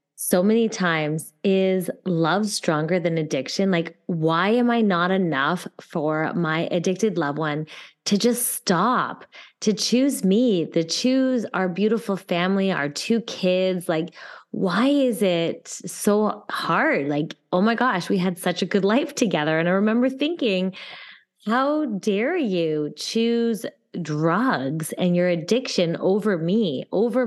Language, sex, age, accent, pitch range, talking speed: English, female, 20-39, American, 165-215 Hz, 145 wpm